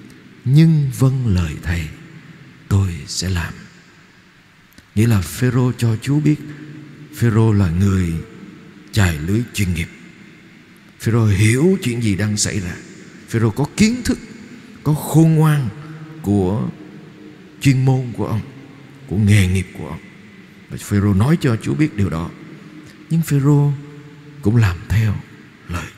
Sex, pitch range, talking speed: male, 95-145 Hz, 130 wpm